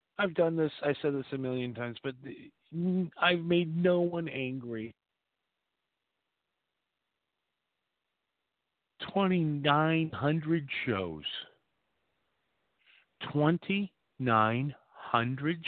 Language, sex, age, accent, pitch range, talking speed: English, male, 50-69, American, 110-155 Hz, 70 wpm